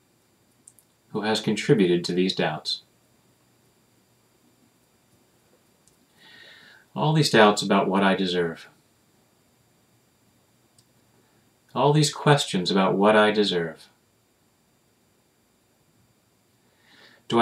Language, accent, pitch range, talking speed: English, American, 105-145 Hz, 70 wpm